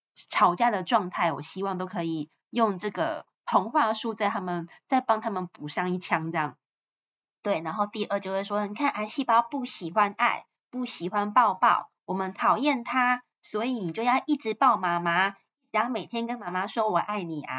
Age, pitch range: 20-39, 170-225 Hz